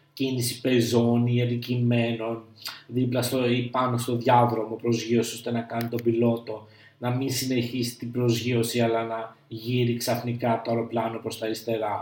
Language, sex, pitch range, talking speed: Greek, male, 115-130 Hz, 150 wpm